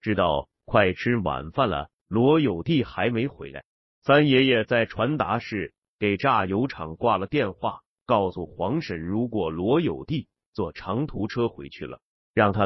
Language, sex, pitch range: Chinese, male, 90-125 Hz